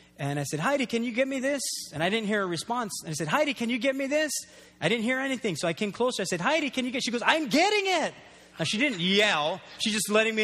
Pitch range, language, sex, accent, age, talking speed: 190-300 Hz, English, male, American, 30-49, 295 wpm